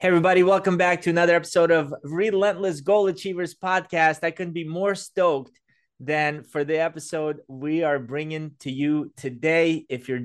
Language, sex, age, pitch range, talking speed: English, male, 20-39, 130-165 Hz, 170 wpm